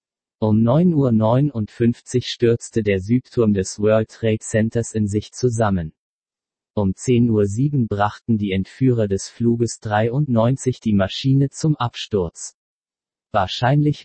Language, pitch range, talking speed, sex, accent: German, 105-125 Hz, 115 wpm, male, German